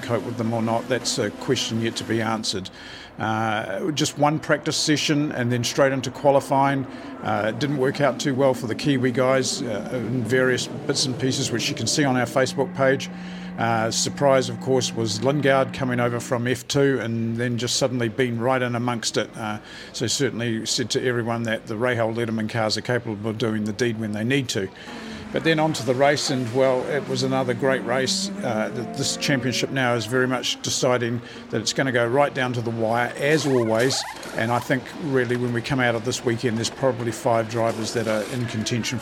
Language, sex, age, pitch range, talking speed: English, male, 50-69, 115-135 Hz, 210 wpm